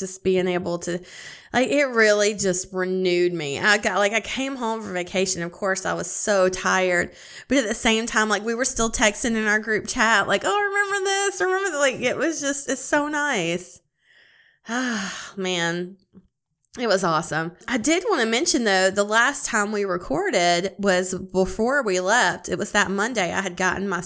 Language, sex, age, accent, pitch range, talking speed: English, female, 20-39, American, 180-220 Hz, 195 wpm